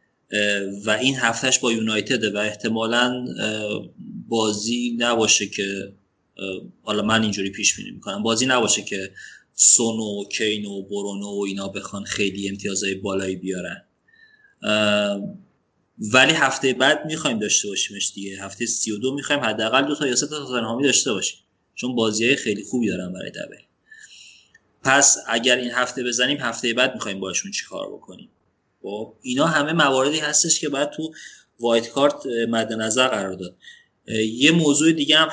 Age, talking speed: 30-49, 145 wpm